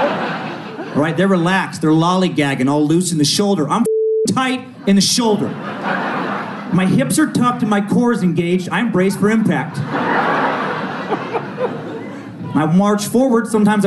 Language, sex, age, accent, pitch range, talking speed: English, male, 30-49, American, 140-210 Hz, 145 wpm